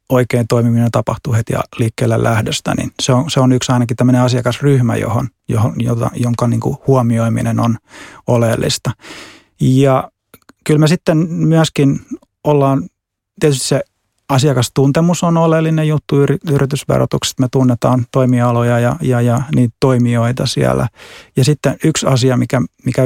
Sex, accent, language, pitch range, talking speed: male, native, Finnish, 120-135 Hz, 120 wpm